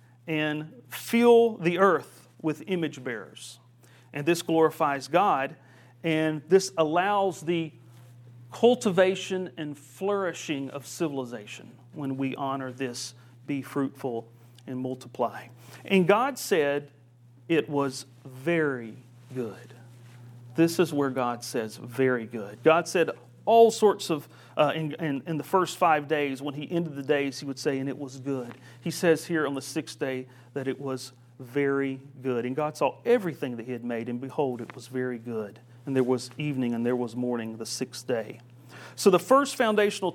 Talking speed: 160 wpm